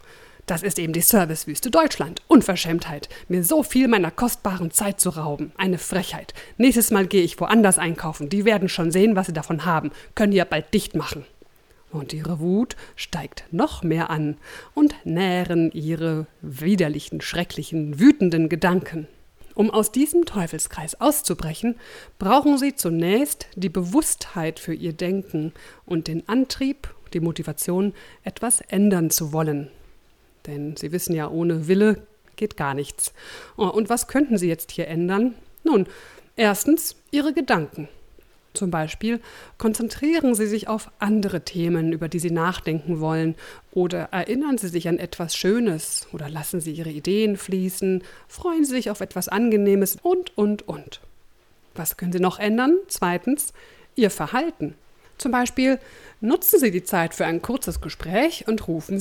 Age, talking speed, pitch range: 50-69, 150 wpm, 165-230 Hz